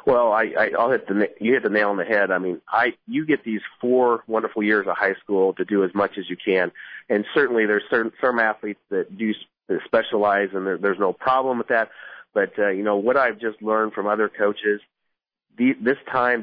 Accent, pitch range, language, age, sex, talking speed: American, 105-120 Hz, English, 30-49, male, 230 wpm